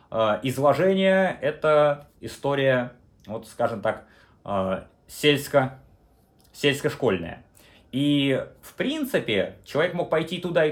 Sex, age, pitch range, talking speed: male, 30-49, 120-175 Hz, 85 wpm